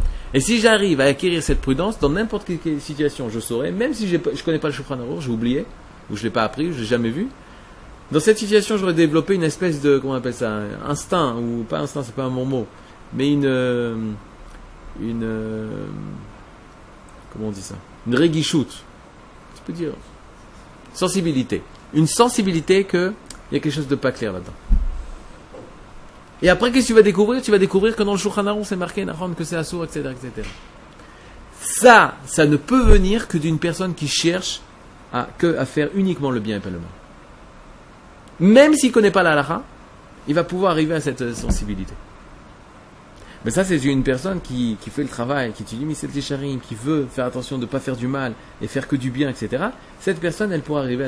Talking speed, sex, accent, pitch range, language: 205 wpm, male, French, 115-175 Hz, French